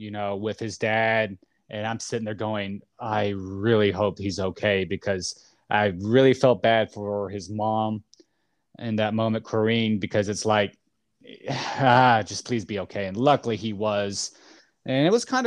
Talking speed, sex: 165 wpm, male